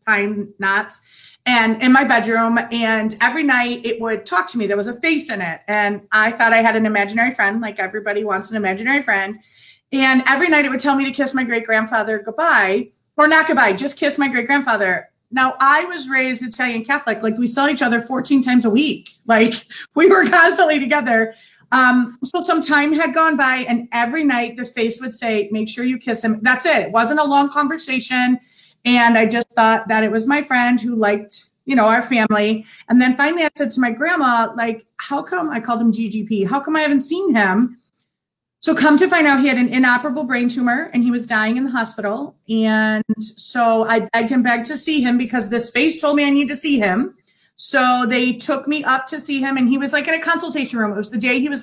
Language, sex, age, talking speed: English, female, 30-49, 230 wpm